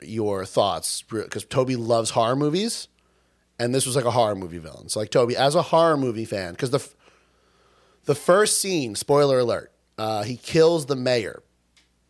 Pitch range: 105-150 Hz